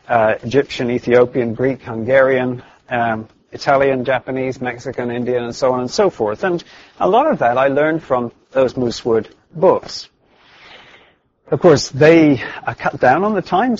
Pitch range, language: 120-145 Hz, English